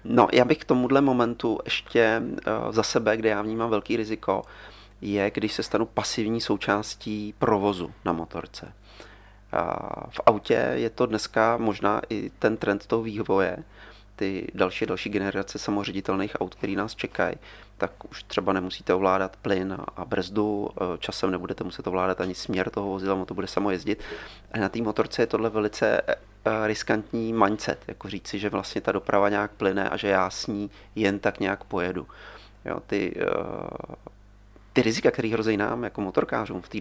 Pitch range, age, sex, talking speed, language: 100-115 Hz, 30-49, male, 165 wpm, Czech